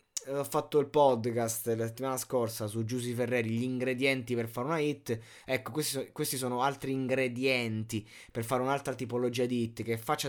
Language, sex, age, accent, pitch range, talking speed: Italian, male, 20-39, native, 110-130 Hz, 175 wpm